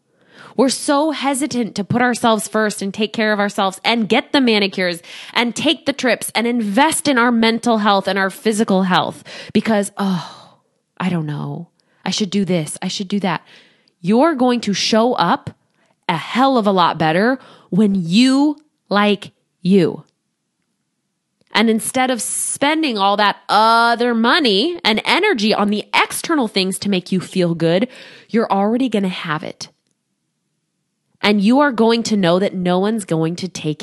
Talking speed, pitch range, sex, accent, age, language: 170 wpm, 185-250 Hz, female, American, 20-39, English